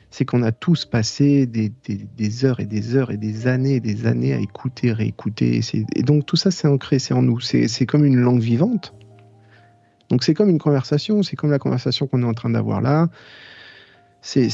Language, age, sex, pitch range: French, 40-59, male, 115-150 Hz